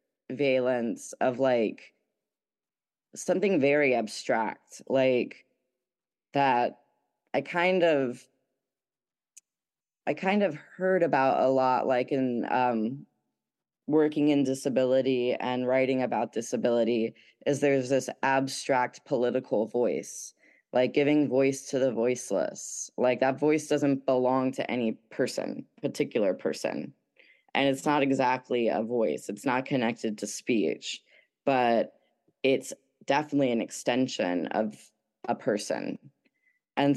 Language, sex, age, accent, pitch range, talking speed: English, female, 20-39, American, 120-140 Hz, 115 wpm